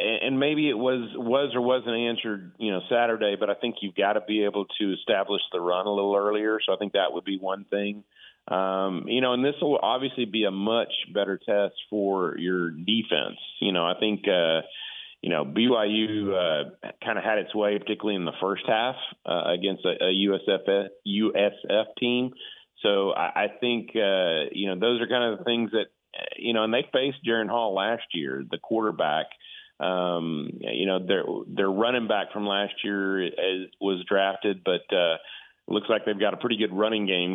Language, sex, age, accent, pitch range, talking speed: English, male, 40-59, American, 95-115 Hz, 200 wpm